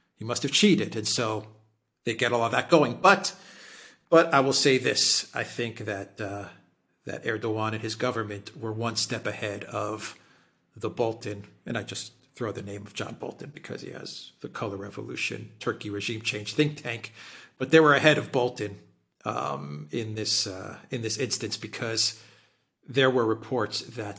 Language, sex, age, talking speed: English, male, 40-59, 180 wpm